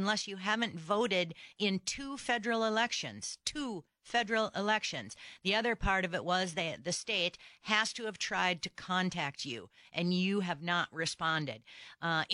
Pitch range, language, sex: 170-215 Hz, English, female